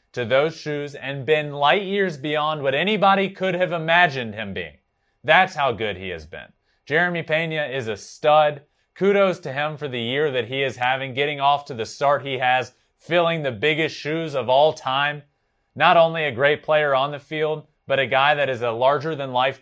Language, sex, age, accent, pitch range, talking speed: English, male, 30-49, American, 115-150 Hz, 200 wpm